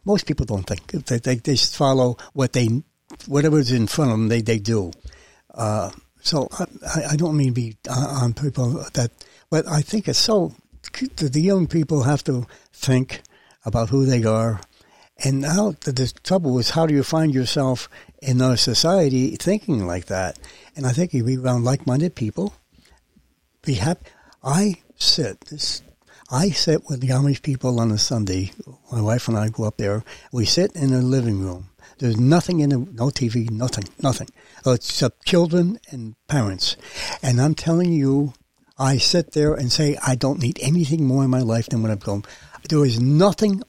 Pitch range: 120-160 Hz